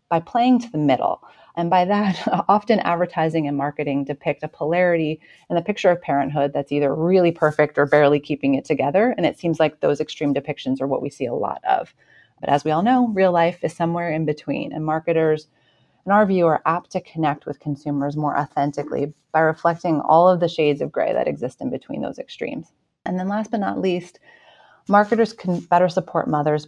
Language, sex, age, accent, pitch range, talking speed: English, female, 30-49, American, 145-180 Hz, 205 wpm